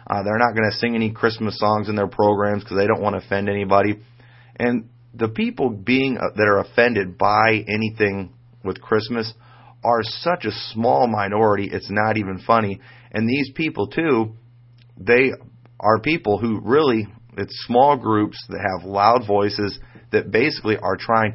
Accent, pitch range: American, 100-120 Hz